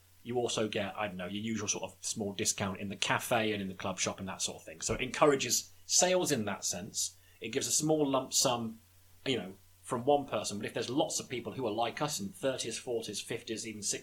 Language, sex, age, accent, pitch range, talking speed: English, male, 30-49, British, 90-125 Hz, 250 wpm